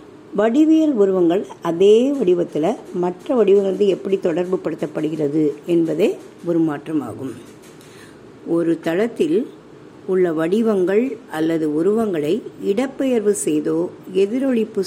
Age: 50-69